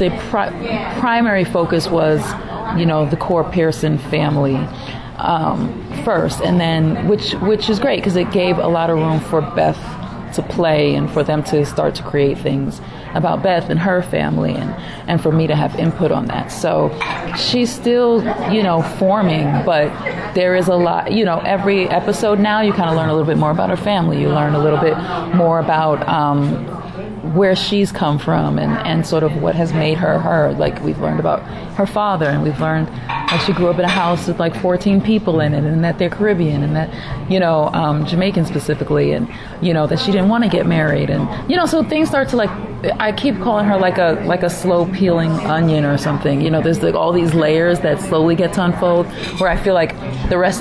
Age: 30-49